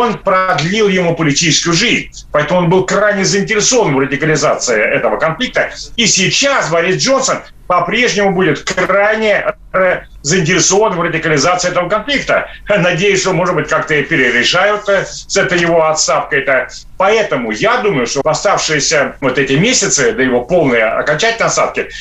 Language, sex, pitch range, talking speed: Russian, male, 155-210 Hz, 135 wpm